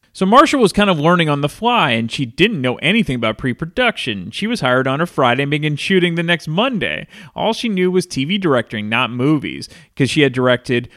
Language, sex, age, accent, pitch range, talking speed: English, male, 30-49, American, 125-185 Hz, 220 wpm